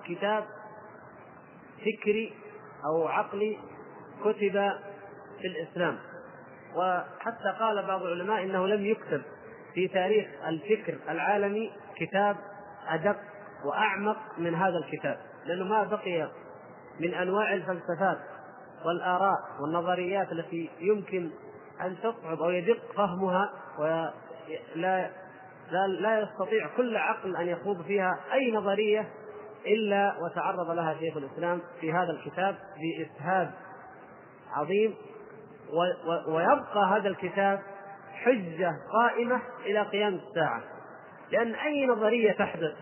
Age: 30-49